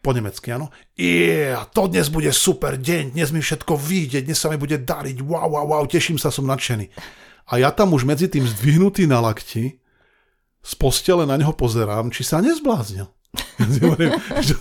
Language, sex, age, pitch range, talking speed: Slovak, male, 40-59, 120-160 Hz, 180 wpm